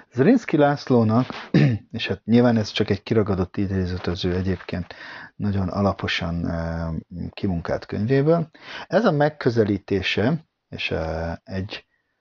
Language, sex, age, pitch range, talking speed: Hungarian, male, 50-69, 90-120 Hz, 100 wpm